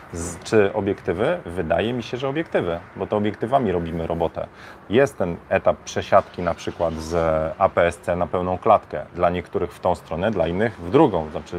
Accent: native